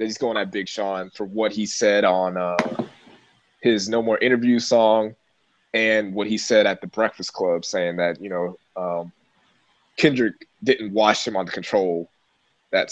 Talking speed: 175 wpm